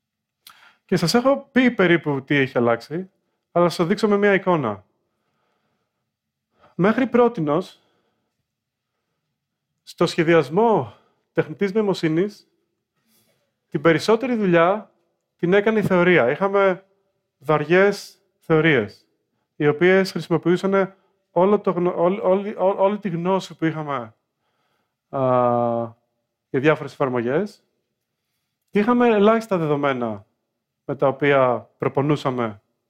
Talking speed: 100 wpm